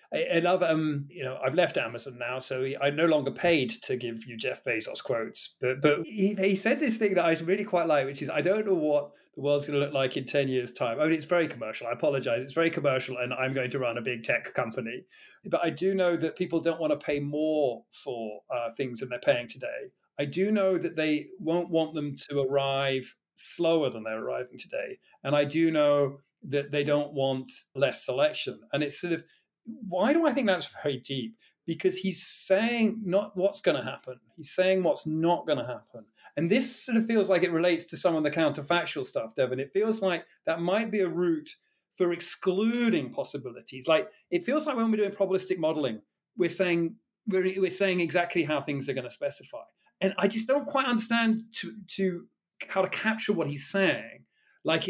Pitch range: 145-195 Hz